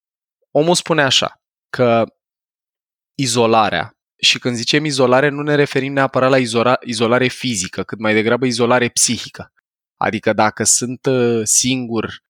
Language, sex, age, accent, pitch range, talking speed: Romanian, male, 20-39, native, 110-130 Hz, 125 wpm